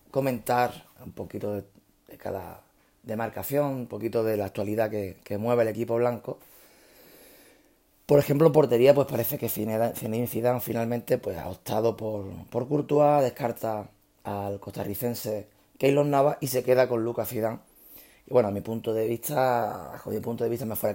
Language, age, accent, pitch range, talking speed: Spanish, 30-49, Spanish, 105-125 Hz, 165 wpm